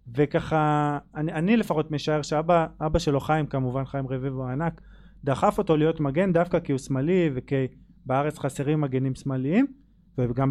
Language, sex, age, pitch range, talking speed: Hebrew, male, 20-39, 140-170 Hz, 155 wpm